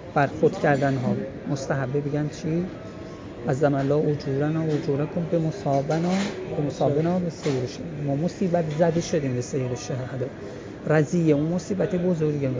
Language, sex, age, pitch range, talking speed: English, male, 30-49, 140-185 Hz, 150 wpm